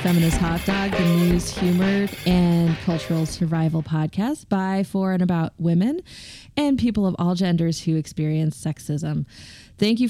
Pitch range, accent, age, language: 165-205 Hz, American, 20-39, English